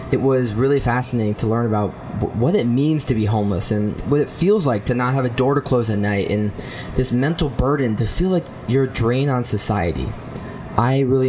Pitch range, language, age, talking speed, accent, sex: 115-140 Hz, English, 20-39, 220 wpm, American, male